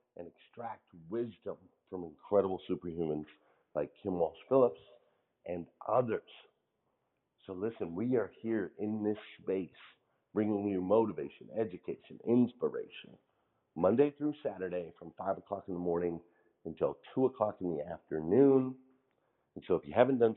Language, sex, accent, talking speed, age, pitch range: English, male, American, 135 wpm, 50-69, 80-110 Hz